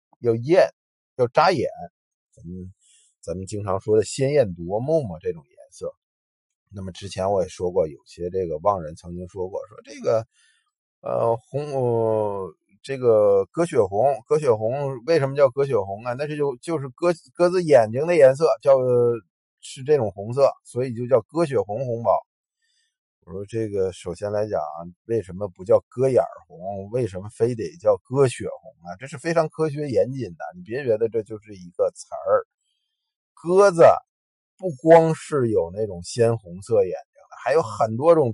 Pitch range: 105-180 Hz